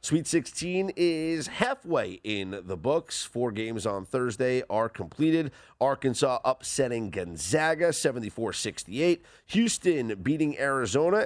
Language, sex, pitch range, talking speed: English, male, 105-140 Hz, 105 wpm